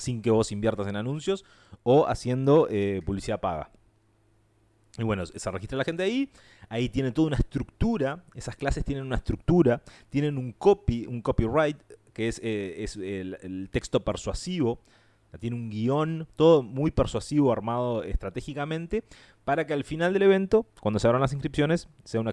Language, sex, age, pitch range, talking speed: Spanish, male, 30-49, 95-125 Hz, 165 wpm